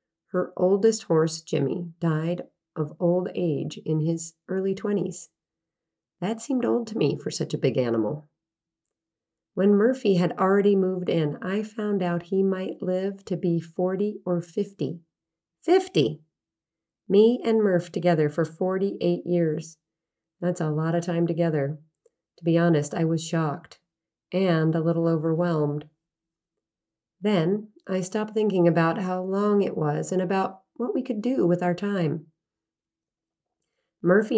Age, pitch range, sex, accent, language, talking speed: 40-59, 165-200 Hz, female, American, English, 145 wpm